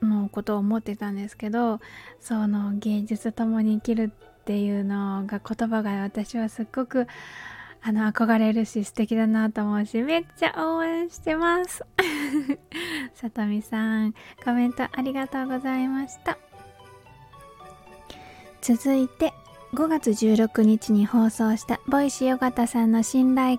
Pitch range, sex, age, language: 215-265 Hz, female, 20-39, Japanese